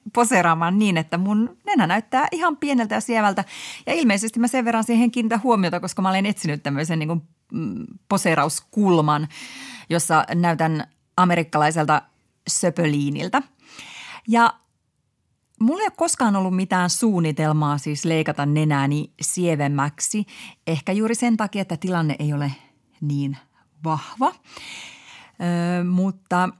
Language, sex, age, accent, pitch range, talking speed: Finnish, female, 30-49, native, 165-225 Hz, 120 wpm